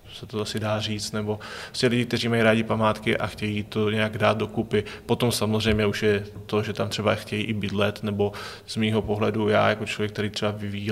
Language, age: Czech, 20-39